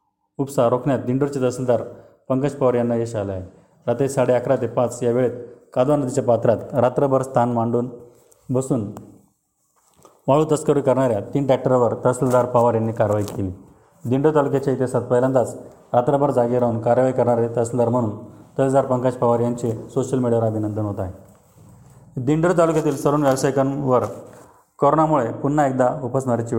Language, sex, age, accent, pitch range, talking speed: Marathi, male, 30-49, native, 115-135 Hz, 140 wpm